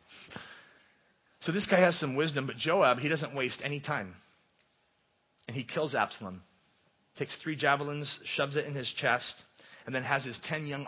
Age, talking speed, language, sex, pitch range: 30-49, 170 wpm, English, male, 125-170 Hz